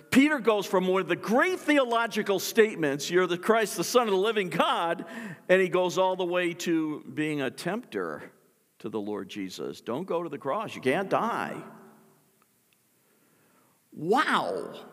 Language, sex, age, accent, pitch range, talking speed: English, male, 50-69, American, 130-205 Hz, 165 wpm